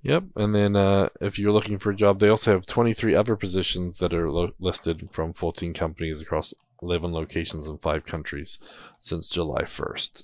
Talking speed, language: 180 wpm, English